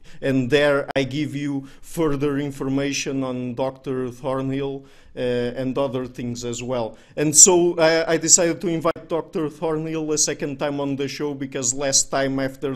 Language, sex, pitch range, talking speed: English, male, 135-150 Hz, 165 wpm